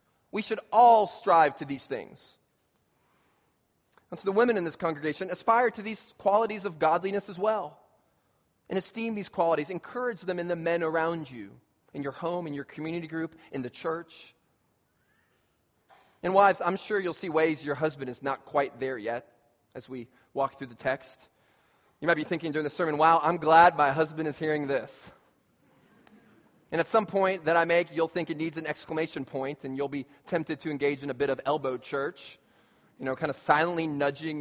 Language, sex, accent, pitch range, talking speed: English, male, American, 145-200 Hz, 190 wpm